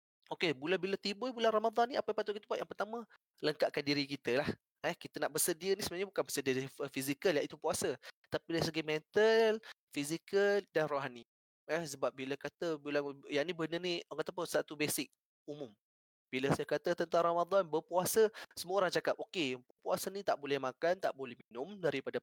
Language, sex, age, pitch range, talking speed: Malay, male, 20-39, 145-190 Hz, 185 wpm